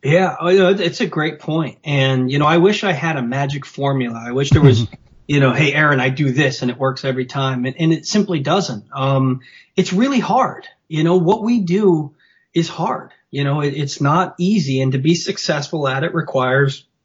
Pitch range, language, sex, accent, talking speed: 130-165 Hz, English, male, American, 210 wpm